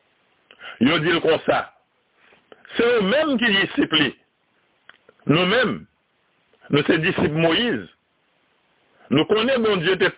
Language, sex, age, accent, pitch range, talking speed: French, male, 60-79, French, 175-225 Hz, 110 wpm